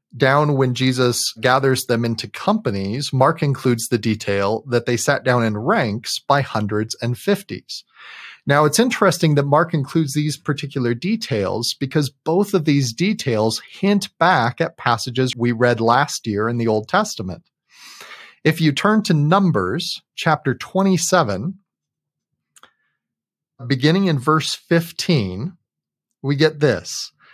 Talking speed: 135 wpm